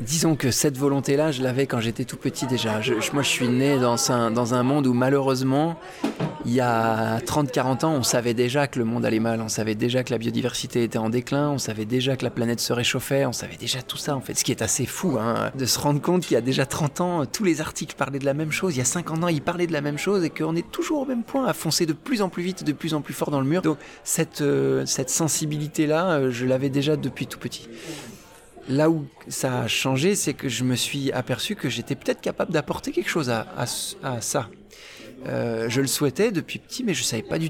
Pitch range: 125-155 Hz